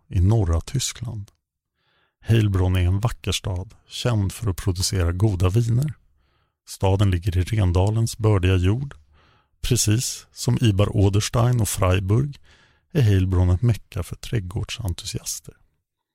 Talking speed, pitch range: 115 wpm, 95-115 Hz